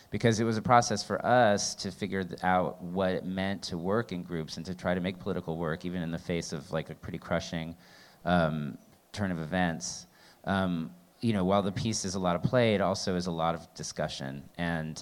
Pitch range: 80-95 Hz